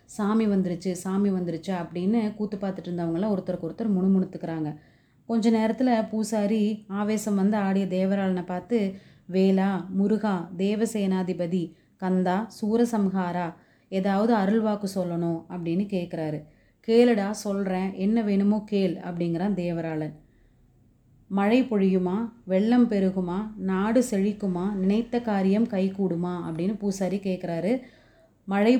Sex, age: female, 30-49